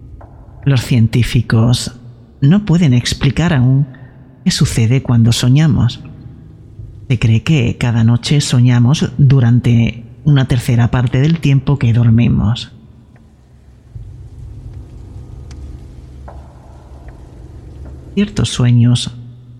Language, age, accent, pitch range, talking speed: Spanish, 40-59, Spanish, 115-130 Hz, 80 wpm